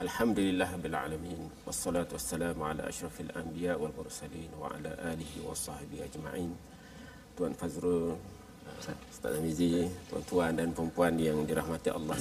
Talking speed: 95 wpm